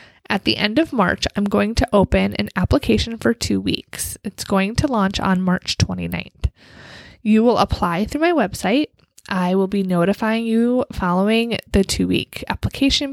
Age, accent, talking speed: 20-39, American, 165 wpm